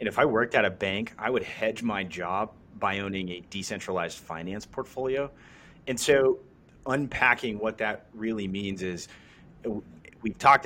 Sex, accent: male, American